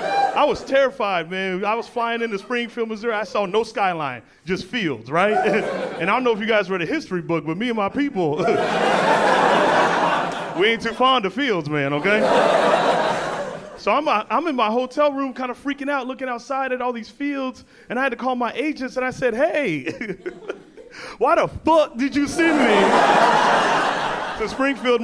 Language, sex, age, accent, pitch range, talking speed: English, male, 30-49, American, 185-255 Hz, 190 wpm